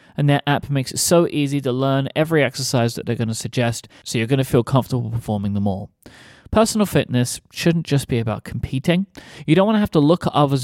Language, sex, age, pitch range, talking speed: English, male, 30-49, 120-150 Hz, 230 wpm